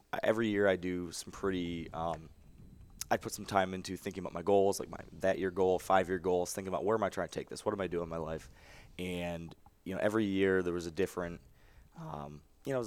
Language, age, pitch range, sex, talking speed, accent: English, 20-39, 85-100 Hz, male, 245 wpm, American